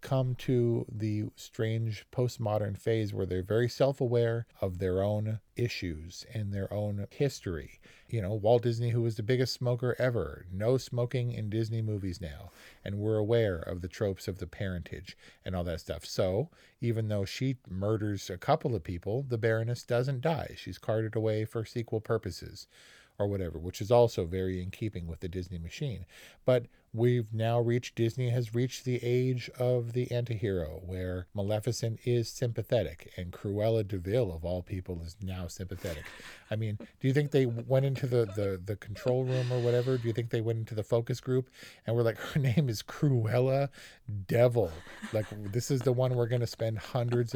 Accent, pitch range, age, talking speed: American, 100-125 Hz, 40-59, 185 wpm